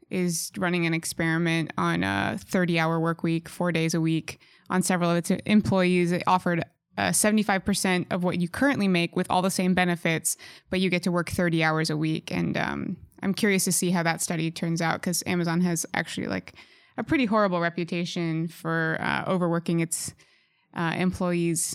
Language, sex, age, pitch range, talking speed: English, female, 20-39, 170-190 Hz, 190 wpm